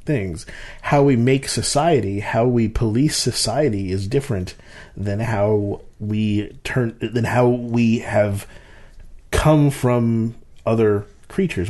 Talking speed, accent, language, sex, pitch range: 120 wpm, American, English, male, 100-125 Hz